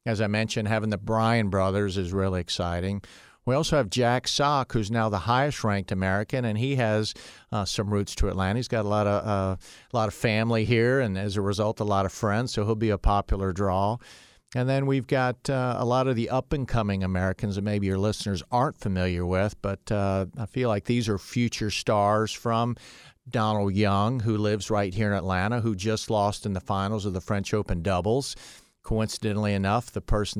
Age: 50-69